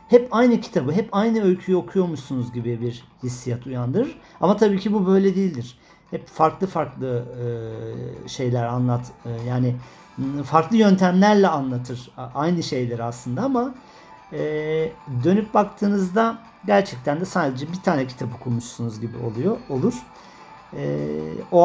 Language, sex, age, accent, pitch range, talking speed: Turkish, male, 50-69, native, 125-185 Hz, 120 wpm